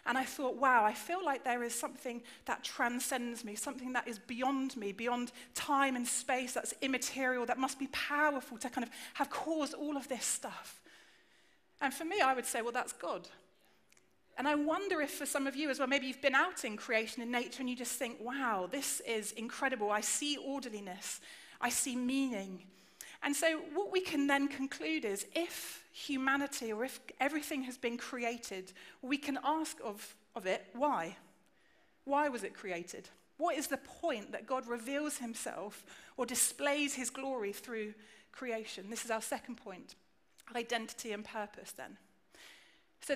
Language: English